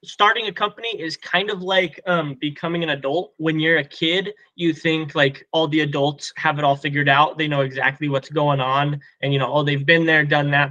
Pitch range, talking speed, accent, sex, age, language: 135-160 Hz, 230 wpm, American, male, 20-39, English